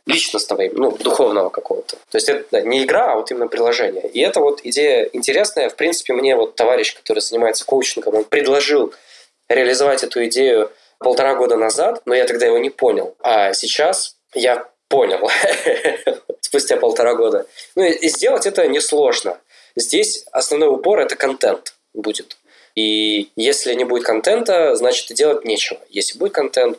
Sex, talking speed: male, 160 wpm